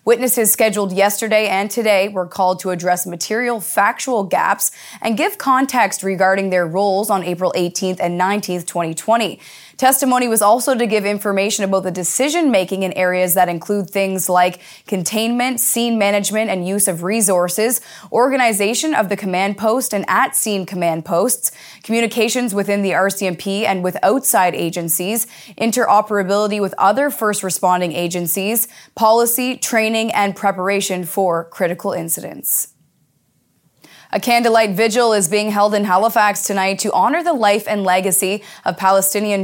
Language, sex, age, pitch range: English, female, 20-39, 185-220 Hz